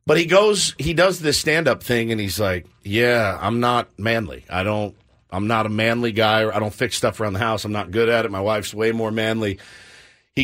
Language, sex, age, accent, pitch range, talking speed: English, male, 50-69, American, 105-135 Hz, 235 wpm